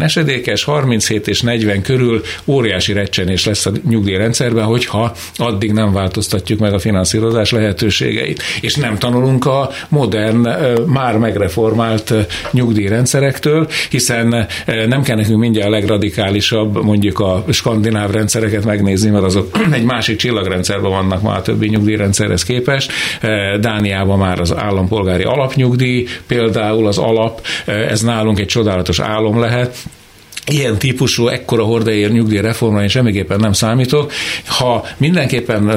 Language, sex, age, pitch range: Hungarian, male, 60-79, 100-120 Hz